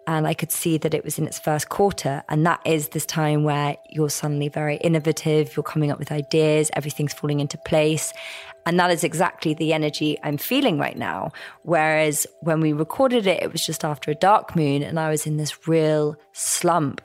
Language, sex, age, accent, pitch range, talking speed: English, female, 20-39, British, 150-170 Hz, 210 wpm